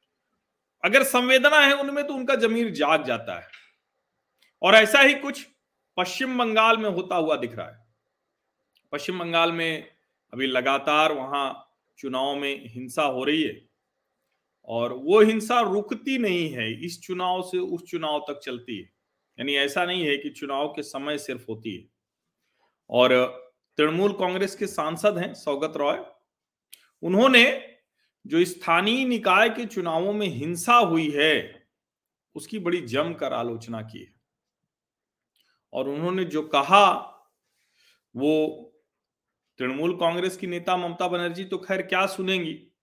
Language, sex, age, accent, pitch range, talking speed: Hindi, male, 40-59, native, 145-205 Hz, 135 wpm